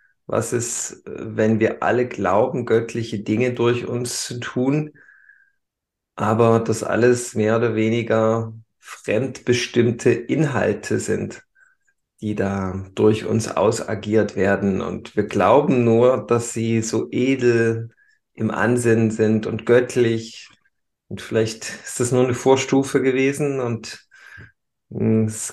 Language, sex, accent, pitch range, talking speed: German, male, German, 110-125 Hz, 120 wpm